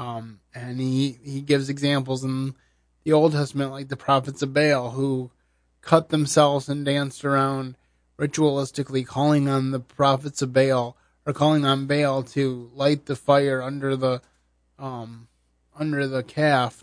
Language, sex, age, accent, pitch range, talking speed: English, male, 20-39, American, 115-145 Hz, 150 wpm